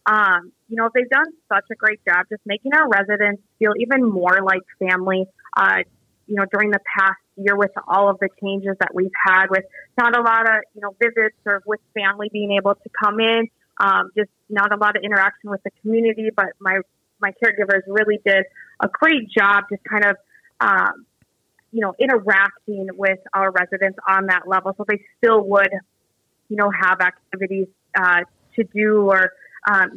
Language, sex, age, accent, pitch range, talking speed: English, female, 20-39, American, 185-215 Hz, 190 wpm